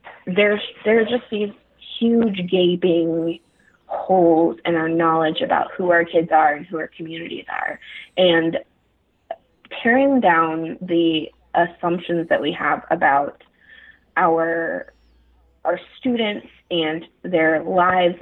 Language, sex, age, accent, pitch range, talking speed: English, female, 20-39, American, 165-195 Hz, 115 wpm